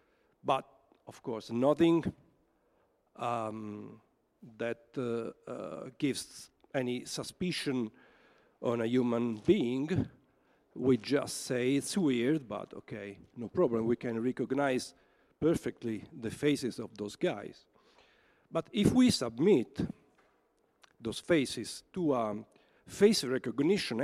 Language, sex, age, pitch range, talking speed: Italian, male, 50-69, 115-145 Hz, 105 wpm